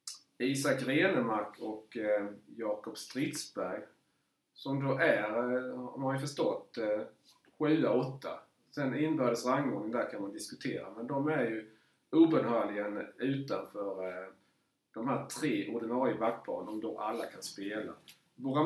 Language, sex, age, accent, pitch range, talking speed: Swedish, male, 30-49, Norwegian, 110-150 Hz, 130 wpm